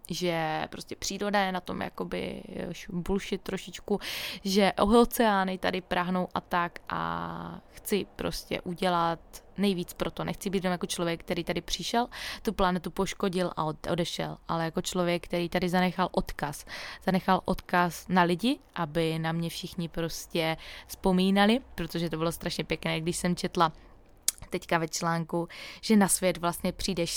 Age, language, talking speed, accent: 20-39, Czech, 145 wpm, native